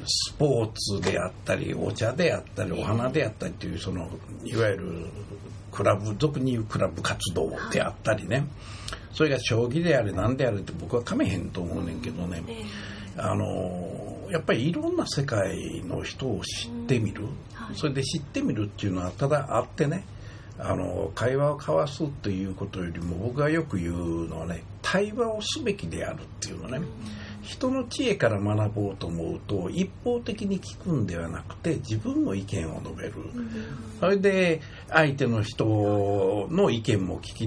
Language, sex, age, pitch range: Japanese, male, 60-79, 95-140 Hz